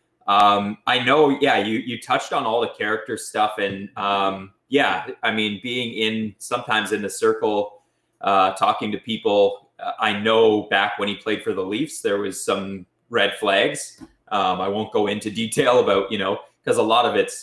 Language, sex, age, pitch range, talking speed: English, male, 20-39, 100-125 Hz, 195 wpm